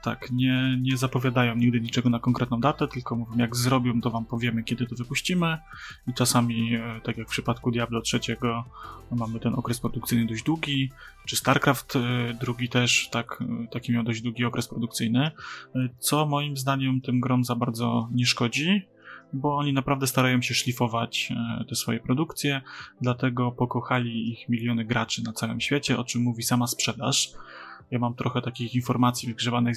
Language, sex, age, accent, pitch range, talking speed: Polish, male, 20-39, native, 115-130 Hz, 160 wpm